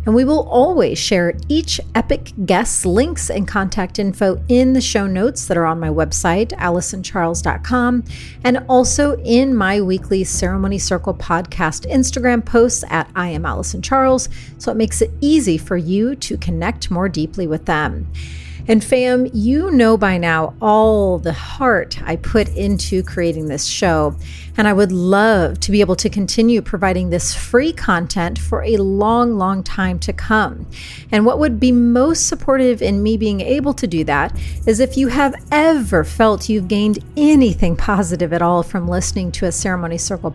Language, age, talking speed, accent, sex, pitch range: English, 30-49, 170 wpm, American, female, 170-245 Hz